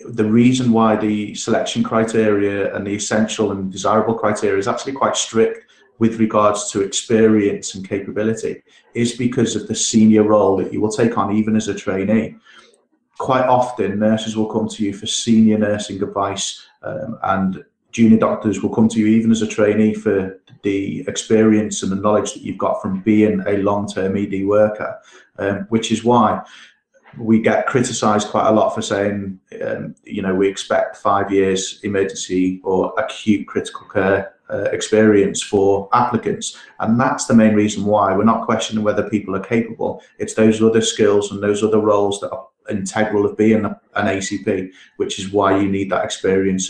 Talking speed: 175 wpm